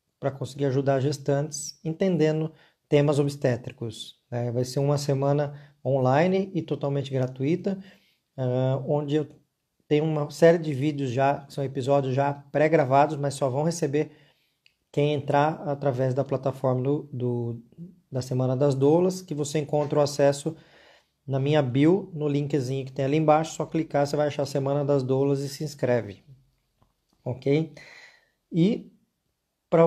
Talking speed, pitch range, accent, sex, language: 140 wpm, 135-155 Hz, Brazilian, male, Portuguese